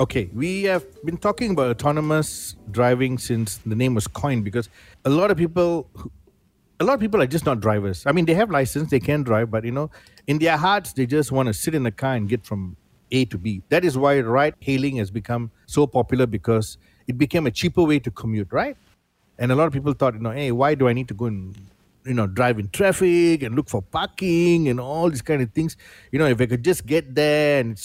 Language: English